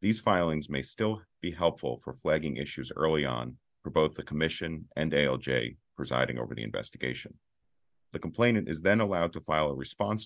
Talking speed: 175 wpm